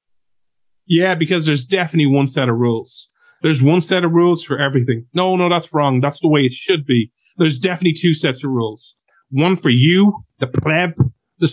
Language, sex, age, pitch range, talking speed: English, male, 30-49, 135-190 Hz, 195 wpm